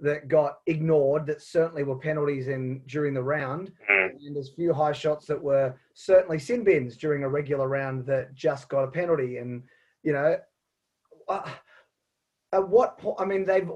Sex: male